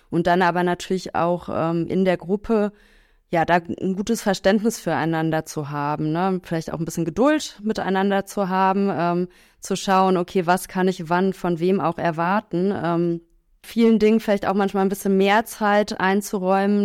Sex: female